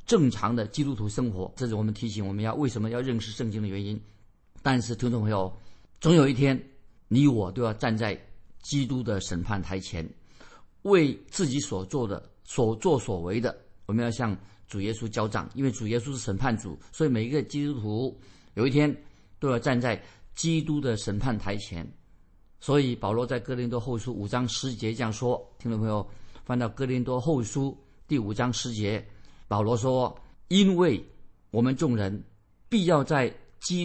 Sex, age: male, 50-69